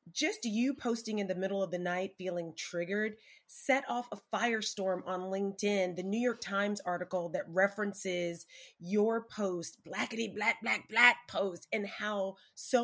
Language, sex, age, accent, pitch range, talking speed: English, female, 30-49, American, 180-220 Hz, 160 wpm